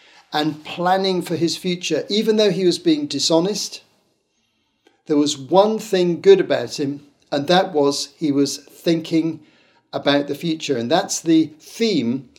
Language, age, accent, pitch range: English, 50-69, British, 140-180 Hz